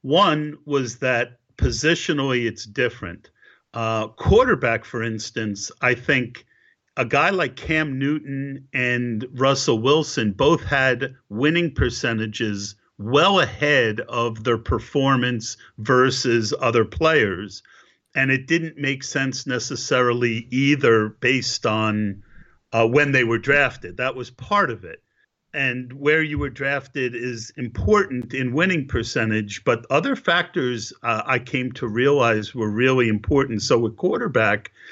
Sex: male